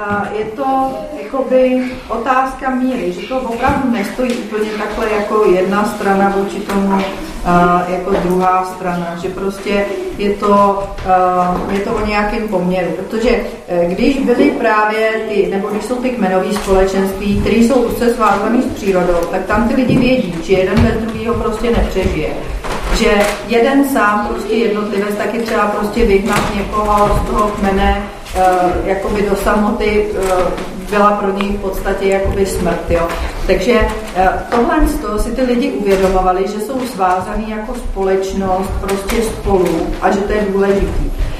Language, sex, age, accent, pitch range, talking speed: Czech, female, 40-59, native, 190-235 Hz, 145 wpm